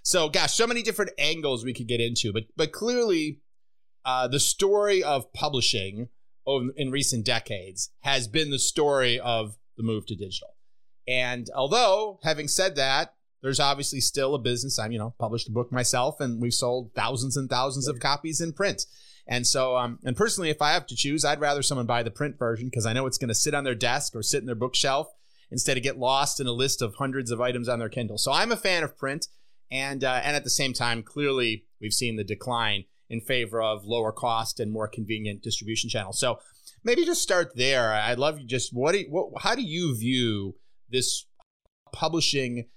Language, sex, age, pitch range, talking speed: English, male, 30-49, 115-140 Hz, 210 wpm